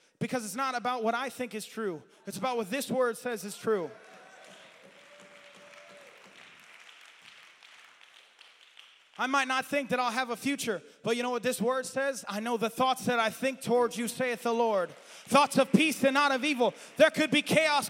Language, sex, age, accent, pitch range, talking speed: English, male, 20-39, American, 205-290 Hz, 190 wpm